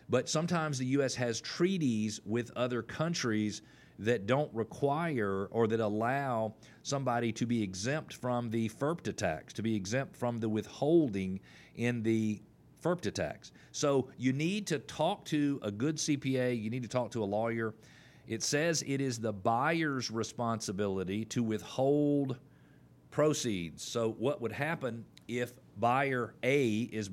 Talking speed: 150 wpm